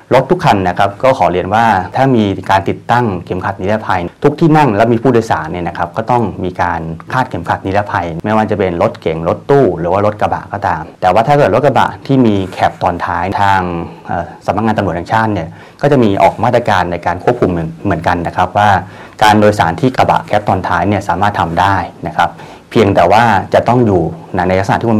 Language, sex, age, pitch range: English, male, 30-49, 90-110 Hz